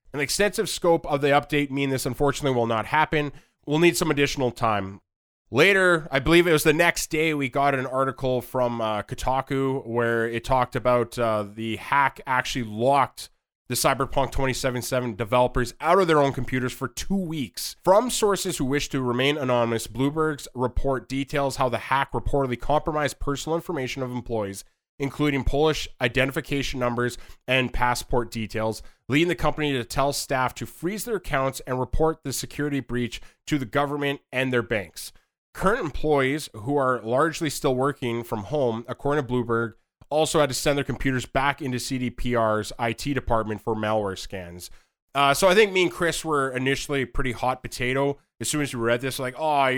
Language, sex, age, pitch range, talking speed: English, male, 20-39, 120-145 Hz, 175 wpm